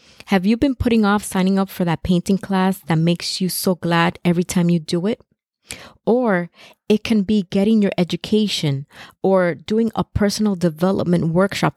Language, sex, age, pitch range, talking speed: English, female, 30-49, 175-215 Hz, 175 wpm